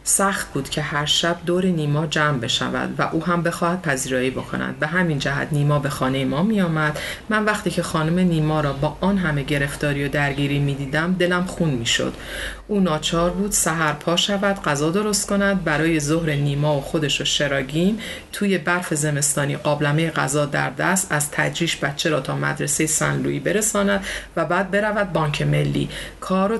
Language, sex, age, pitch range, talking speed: Persian, female, 30-49, 150-200 Hz, 180 wpm